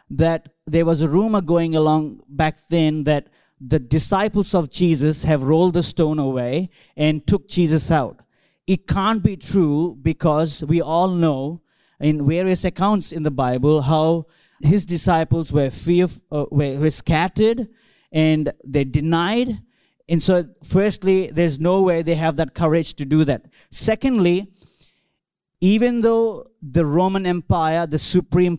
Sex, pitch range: male, 155-185 Hz